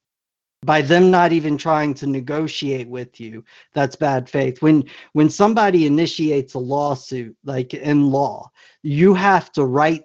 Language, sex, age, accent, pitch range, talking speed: English, male, 50-69, American, 135-155 Hz, 150 wpm